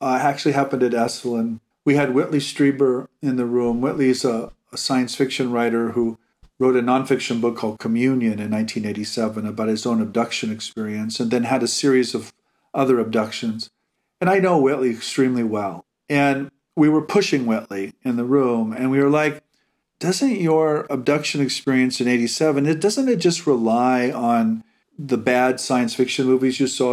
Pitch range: 125-160 Hz